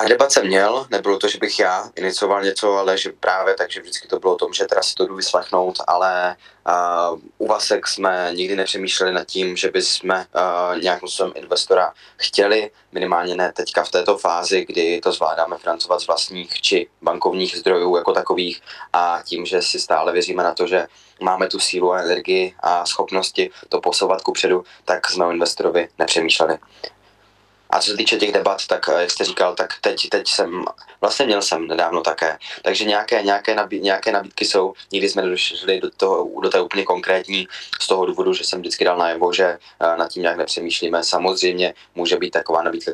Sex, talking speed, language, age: male, 190 wpm, Czech, 20-39